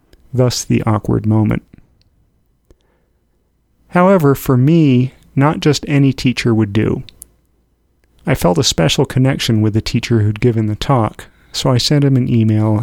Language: English